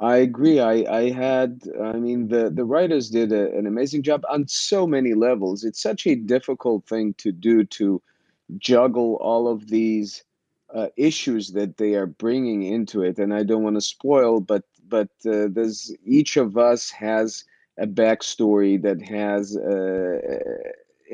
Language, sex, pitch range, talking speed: English, male, 105-125 Hz, 165 wpm